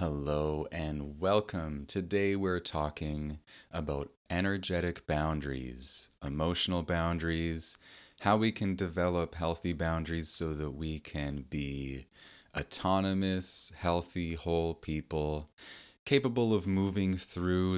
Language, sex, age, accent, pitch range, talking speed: English, male, 30-49, American, 75-90 Hz, 100 wpm